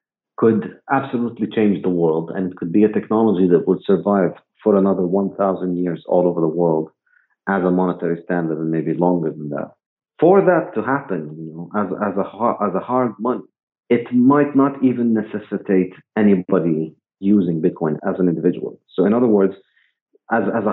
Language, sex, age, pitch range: English, male, 40-59, 85-110 Hz